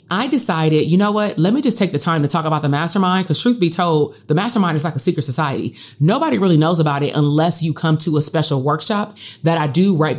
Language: English